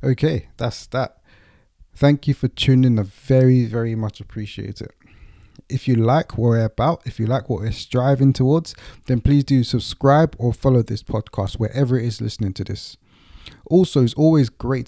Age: 20-39